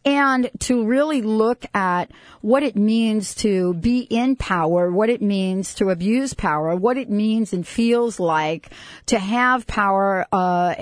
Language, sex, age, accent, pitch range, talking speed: English, female, 40-59, American, 185-235 Hz, 155 wpm